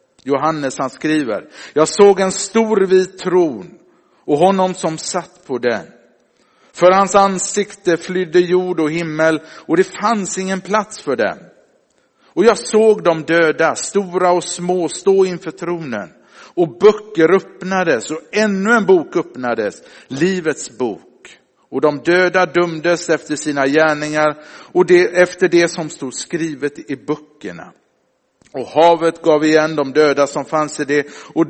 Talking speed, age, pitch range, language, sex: 145 wpm, 50-69, 150-185 Hz, Swedish, male